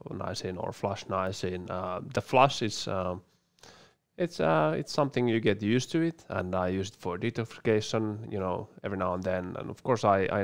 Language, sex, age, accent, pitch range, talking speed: English, male, 20-39, Finnish, 95-115 Hz, 205 wpm